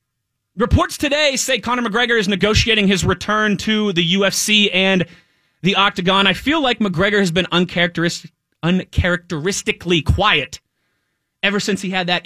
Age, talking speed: 20-39, 140 wpm